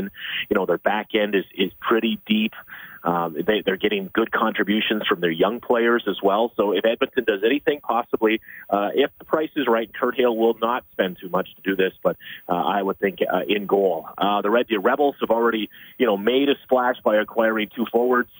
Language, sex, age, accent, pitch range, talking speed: English, male, 30-49, American, 105-120 Hz, 220 wpm